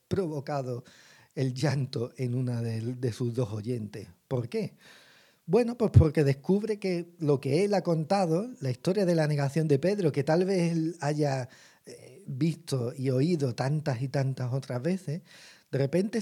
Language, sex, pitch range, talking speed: Spanish, male, 125-165 Hz, 165 wpm